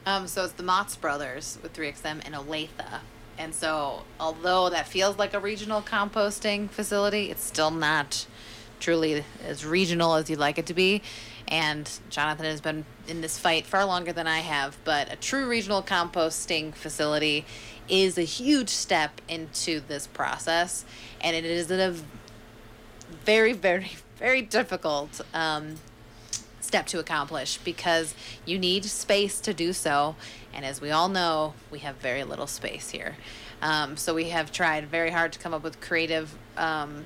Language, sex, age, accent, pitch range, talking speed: English, female, 30-49, American, 145-185 Hz, 165 wpm